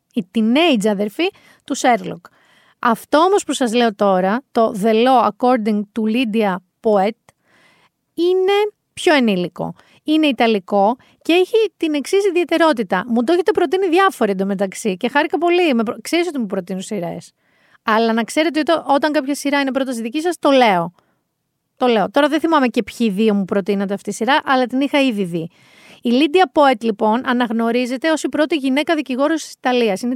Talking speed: 170 wpm